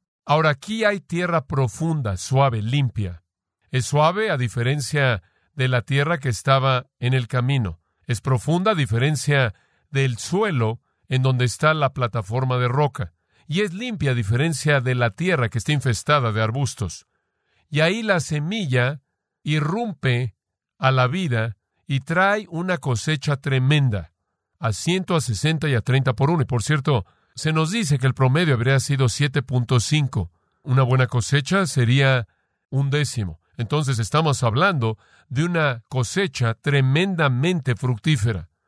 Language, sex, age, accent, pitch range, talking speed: Spanish, male, 50-69, Mexican, 120-155 Hz, 145 wpm